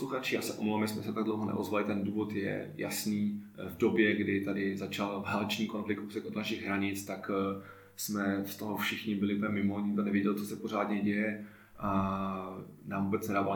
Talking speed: 175 wpm